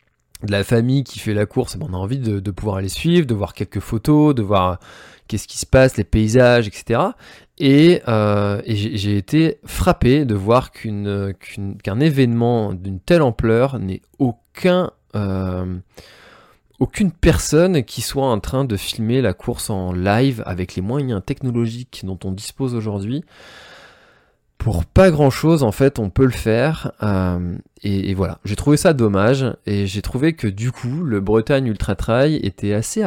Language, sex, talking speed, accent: French, male, 175 wpm, French